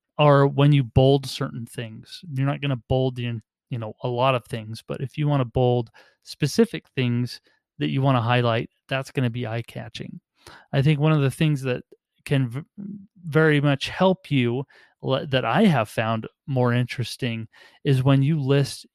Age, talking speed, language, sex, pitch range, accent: 30-49, 170 wpm, English, male, 120-150 Hz, American